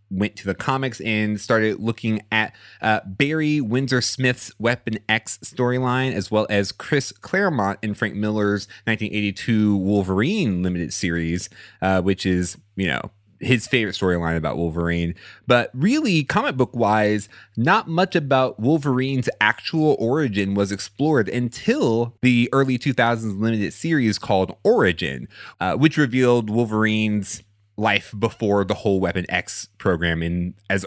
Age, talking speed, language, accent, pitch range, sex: 30-49, 140 wpm, English, American, 100-130 Hz, male